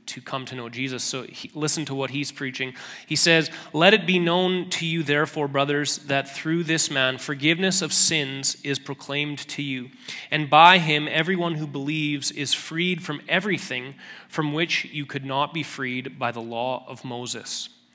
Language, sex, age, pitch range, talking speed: English, male, 30-49, 135-165 Hz, 180 wpm